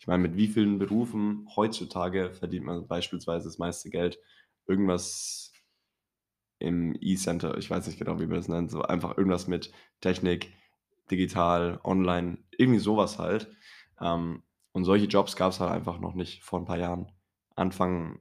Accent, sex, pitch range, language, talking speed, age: German, male, 90-95 Hz, German, 160 wpm, 10-29